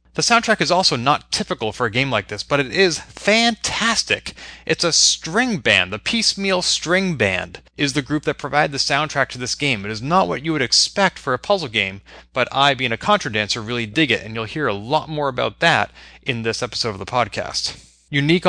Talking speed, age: 220 wpm, 30-49